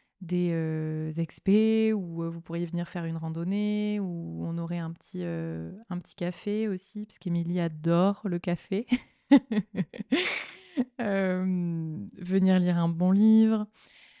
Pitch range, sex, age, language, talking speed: 170-210 Hz, female, 20-39, French, 135 wpm